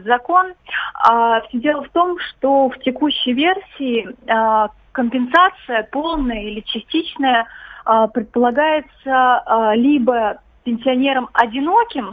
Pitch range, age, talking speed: 225-275 Hz, 20-39, 85 wpm